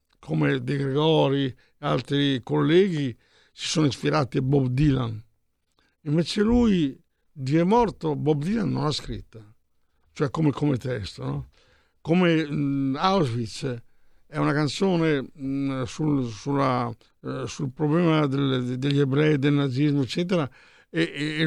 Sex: male